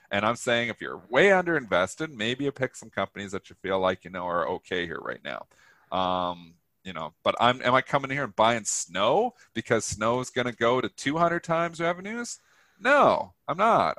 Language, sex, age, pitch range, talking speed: English, male, 40-59, 110-145 Hz, 210 wpm